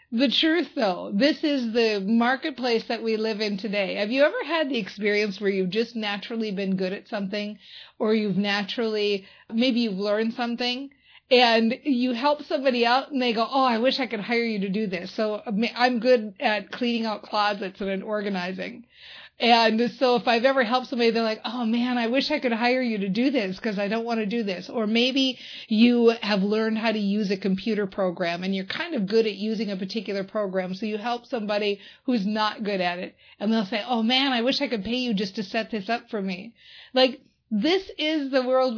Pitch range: 205-255 Hz